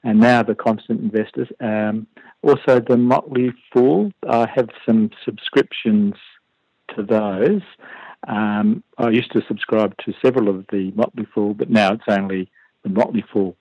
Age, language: 50-69, English